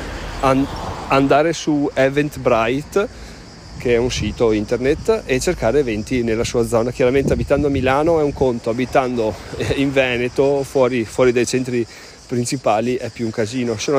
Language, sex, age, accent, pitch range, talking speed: Italian, male, 40-59, native, 115-140 Hz, 145 wpm